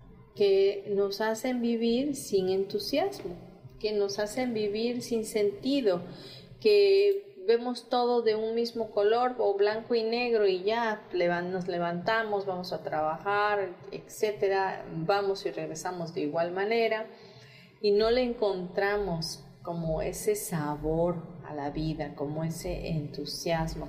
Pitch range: 155-215 Hz